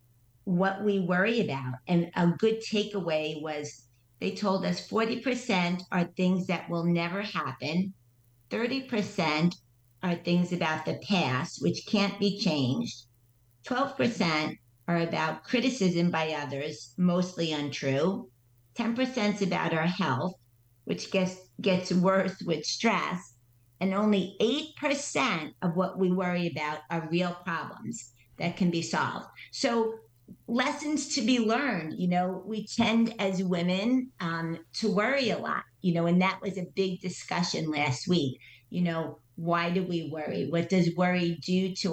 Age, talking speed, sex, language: 50-69, 150 wpm, female, English